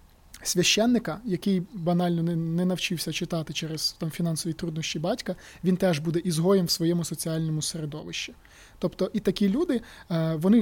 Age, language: 20-39, Ukrainian